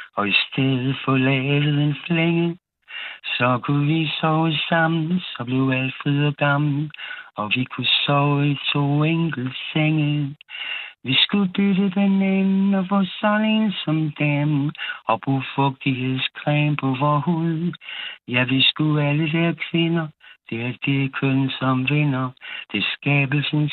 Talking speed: 140 wpm